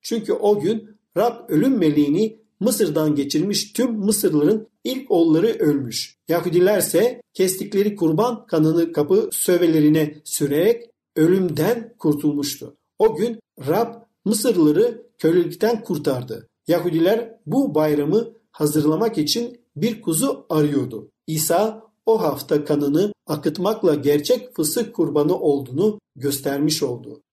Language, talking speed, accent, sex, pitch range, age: Turkish, 100 wpm, native, male, 155-225 Hz, 50-69